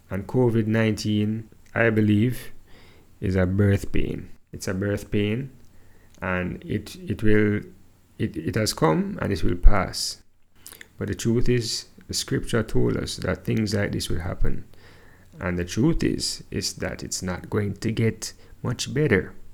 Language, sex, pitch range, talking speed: English, male, 90-105 Hz, 160 wpm